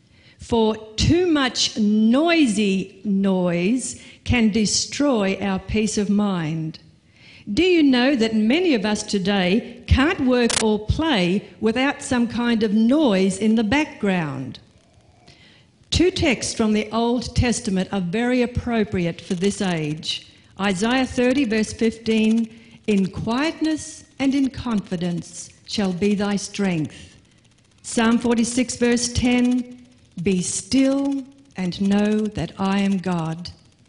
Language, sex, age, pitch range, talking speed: English, female, 50-69, 190-240 Hz, 120 wpm